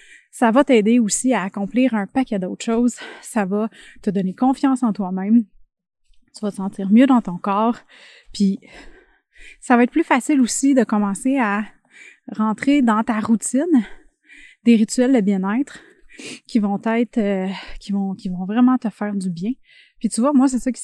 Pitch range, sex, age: 205-260 Hz, female, 20-39